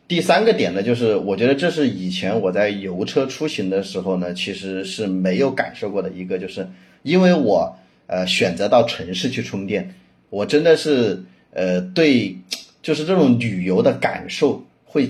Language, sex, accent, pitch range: Chinese, male, native, 95-150 Hz